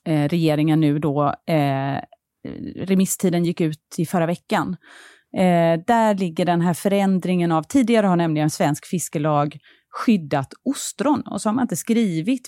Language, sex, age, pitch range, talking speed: Swedish, female, 30-49, 160-215 Hz, 150 wpm